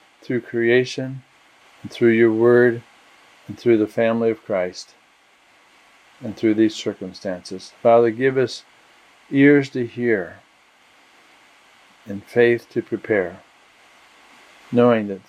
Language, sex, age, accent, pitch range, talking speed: English, male, 50-69, American, 110-125 Hz, 110 wpm